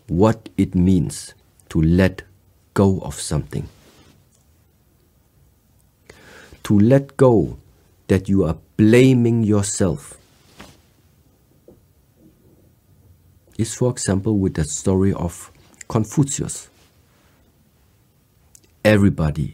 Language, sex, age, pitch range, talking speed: English, male, 50-69, 90-115 Hz, 75 wpm